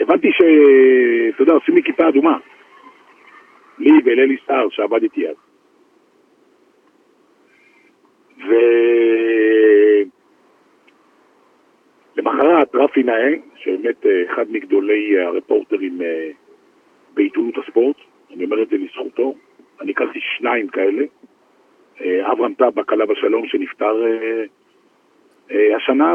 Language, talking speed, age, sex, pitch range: Hebrew, 85 wpm, 50-69, male, 300-385 Hz